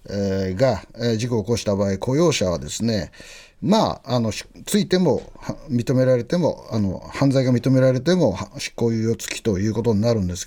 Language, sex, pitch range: Japanese, male, 100-130 Hz